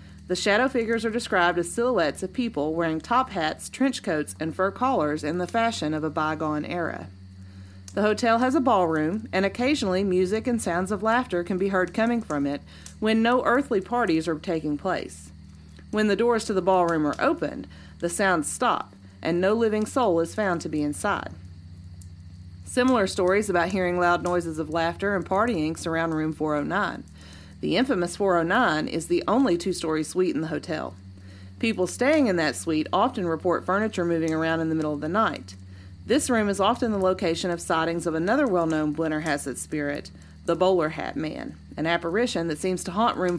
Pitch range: 150-200 Hz